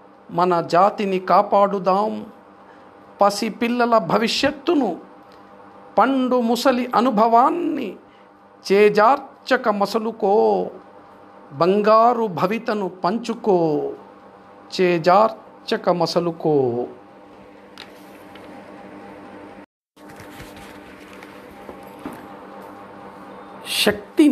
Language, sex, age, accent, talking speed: Telugu, male, 50-69, native, 35 wpm